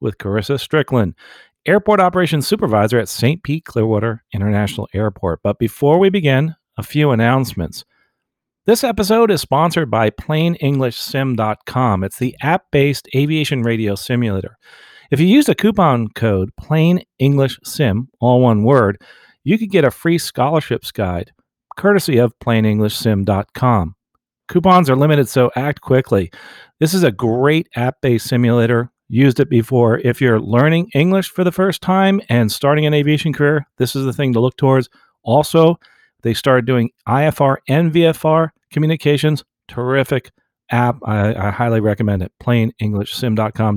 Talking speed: 140 wpm